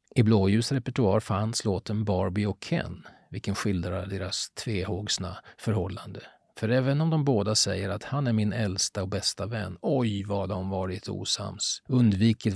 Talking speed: 155 wpm